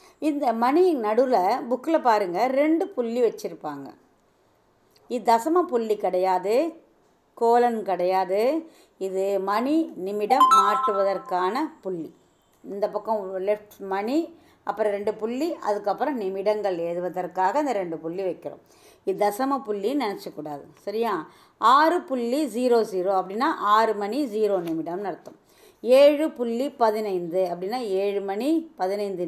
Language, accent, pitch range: Tamil, native, 190-265 Hz